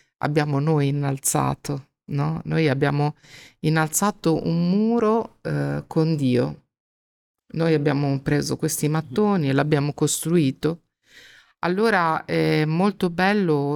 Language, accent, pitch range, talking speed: Italian, native, 150-175 Hz, 100 wpm